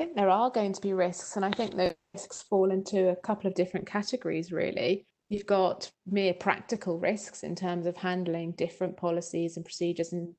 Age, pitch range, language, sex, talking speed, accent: 30-49, 165-185 Hz, English, female, 190 wpm, British